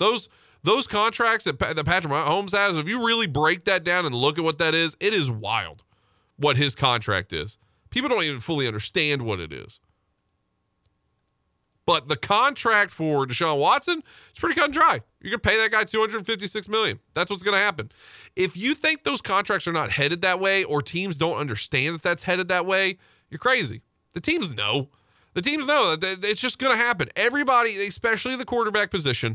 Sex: male